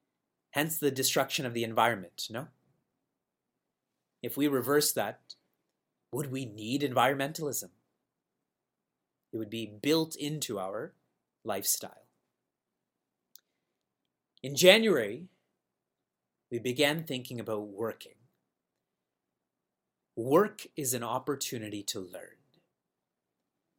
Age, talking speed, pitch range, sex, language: 30-49, 90 wpm, 115-145 Hz, male, English